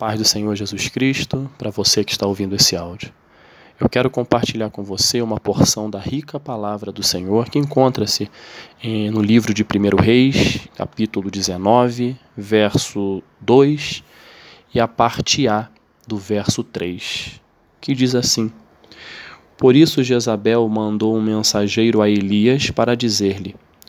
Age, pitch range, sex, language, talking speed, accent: 20-39, 105-125 Hz, male, Portuguese, 140 wpm, Brazilian